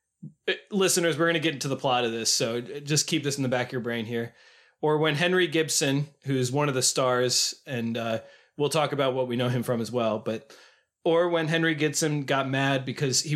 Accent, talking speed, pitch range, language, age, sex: American, 235 wpm, 125-155 Hz, English, 20-39, male